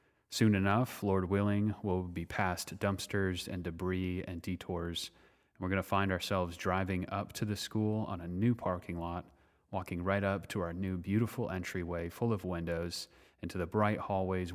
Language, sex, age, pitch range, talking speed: English, male, 30-49, 90-100 Hz, 175 wpm